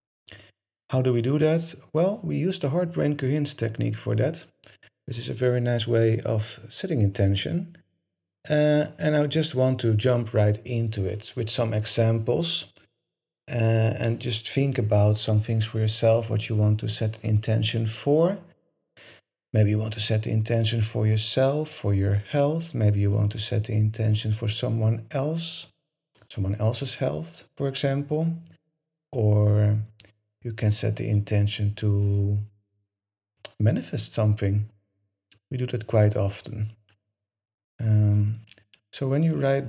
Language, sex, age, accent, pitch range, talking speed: English, male, 40-59, Dutch, 110-135 Hz, 150 wpm